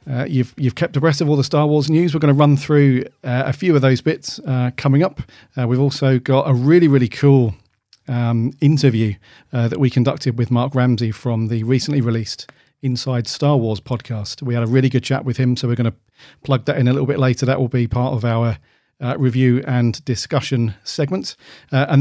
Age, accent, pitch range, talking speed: 40-59, British, 120-145 Hz, 225 wpm